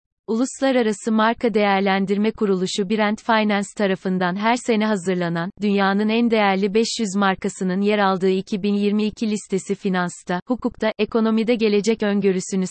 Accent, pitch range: native, 190-220 Hz